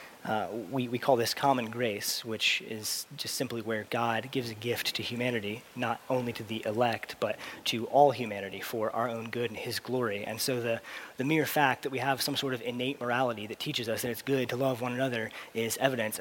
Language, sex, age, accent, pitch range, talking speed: English, male, 30-49, American, 115-135 Hz, 220 wpm